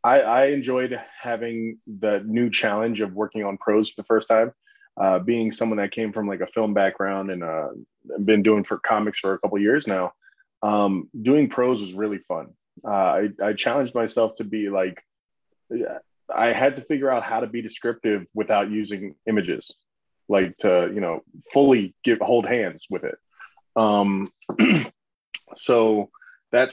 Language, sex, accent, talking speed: English, male, American, 170 wpm